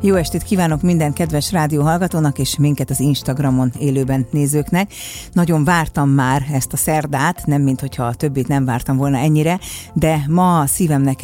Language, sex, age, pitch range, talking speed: Hungarian, female, 50-69, 135-170 Hz, 155 wpm